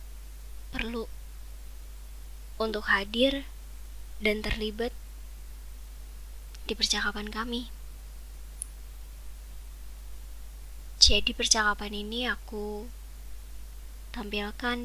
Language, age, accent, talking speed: Indonesian, 20-39, American, 55 wpm